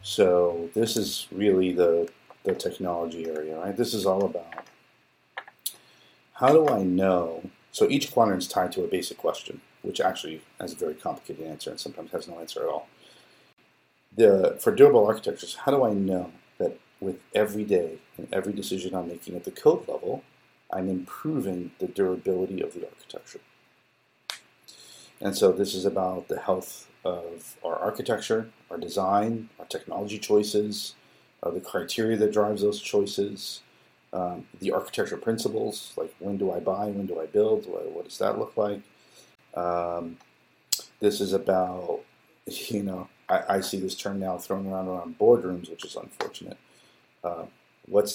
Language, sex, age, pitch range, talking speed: English, male, 50-69, 90-115 Hz, 160 wpm